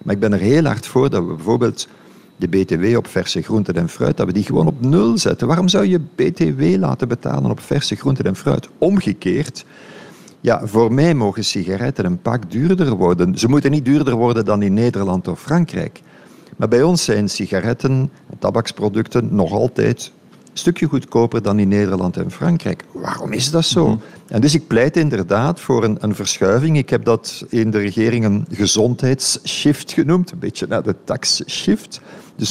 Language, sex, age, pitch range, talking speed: Dutch, male, 50-69, 105-155 Hz, 185 wpm